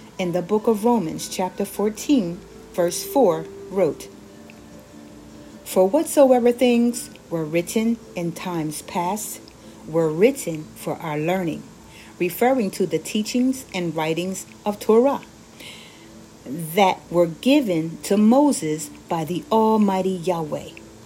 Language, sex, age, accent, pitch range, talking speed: English, female, 40-59, American, 155-215 Hz, 115 wpm